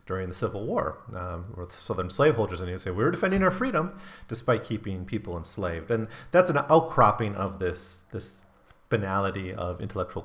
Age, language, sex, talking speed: 40-59, English, male, 175 wpm